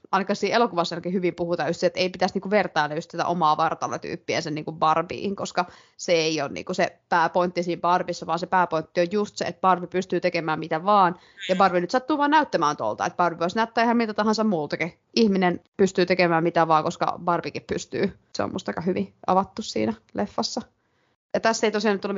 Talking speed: 185 wpm